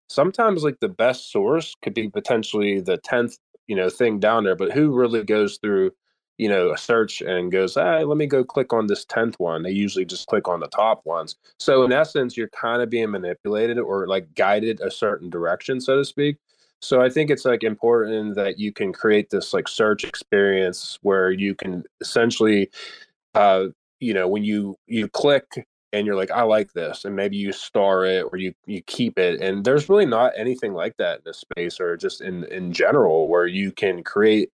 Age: 20-39